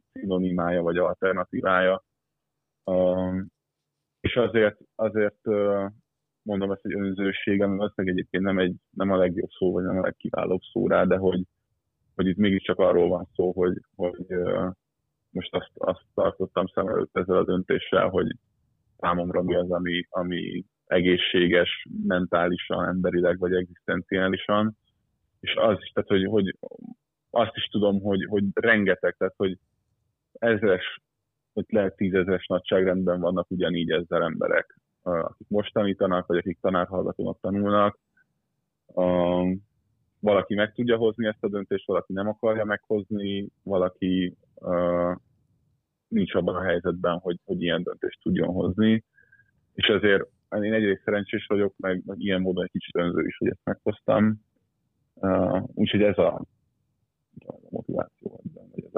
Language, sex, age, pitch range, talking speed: Hungarian, male, 20-39, 90-105 Hz, 135 wpm